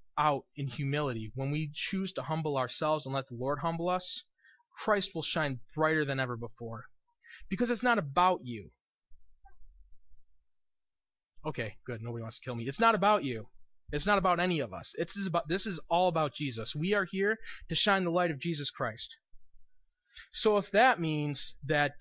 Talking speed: 180 wpm